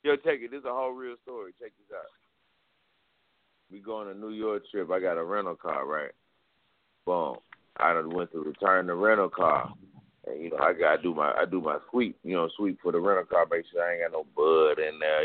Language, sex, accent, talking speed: English, male, American, 240 wpm